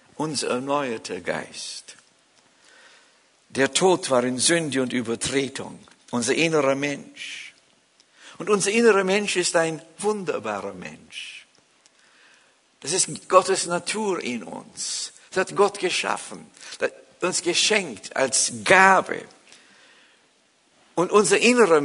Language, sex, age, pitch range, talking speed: German, male, 60-79, 130-190 Hz, 105 wpm